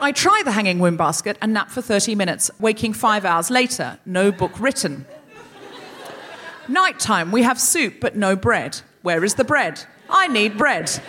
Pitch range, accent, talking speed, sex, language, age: 210-300 Hz, British, 175 wpm, female, English, 40-59